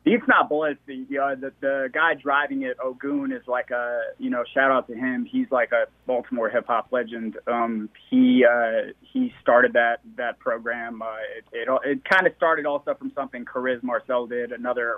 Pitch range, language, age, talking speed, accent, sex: 120-140 Hz, English, 20-39, 195 wpm, American, male